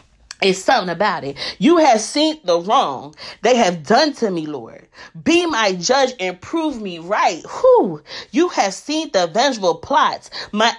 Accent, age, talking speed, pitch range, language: American, 30-49, 165 wpm, 195-290 Hz, English